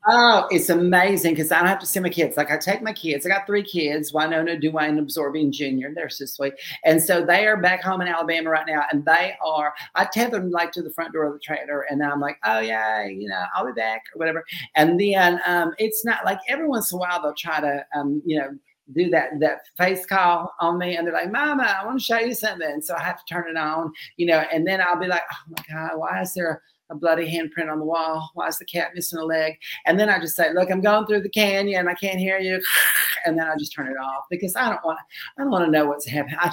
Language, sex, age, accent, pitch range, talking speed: English, male, 40-59, American, 155-185 Hz, 275 wpm